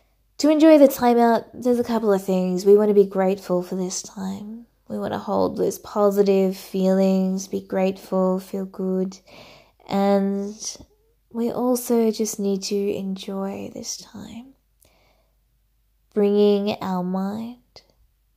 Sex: female